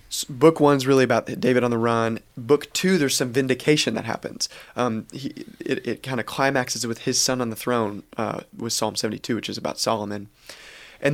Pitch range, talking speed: 115-135 Hz, 200 wpm